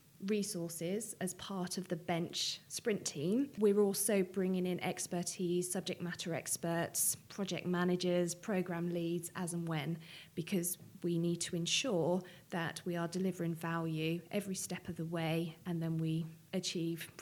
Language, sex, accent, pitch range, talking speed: English, female, British, 170-195 Hz, 145 wpm